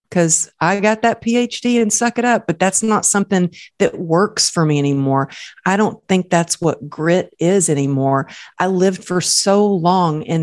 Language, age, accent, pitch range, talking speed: English, 40-59, American, 145-180 Hz, 185 wpm